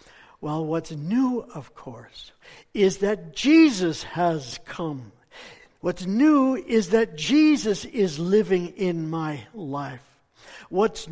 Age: 60-79